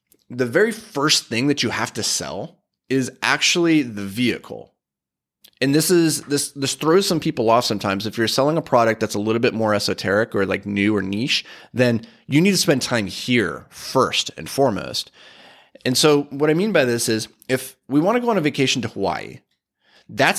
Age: 30-49